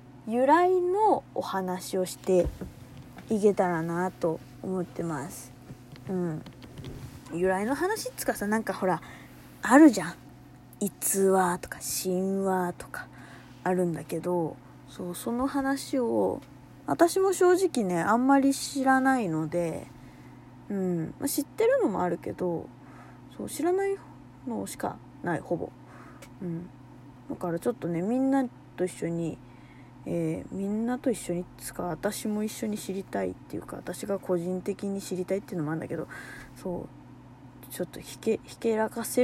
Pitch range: 170-245 Hz